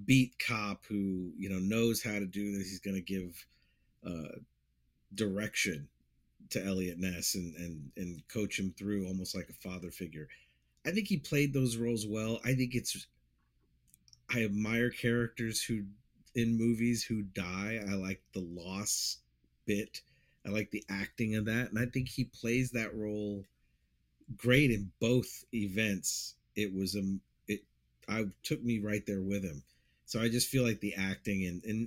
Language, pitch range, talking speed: English, 90-120 Hz, 170 wpm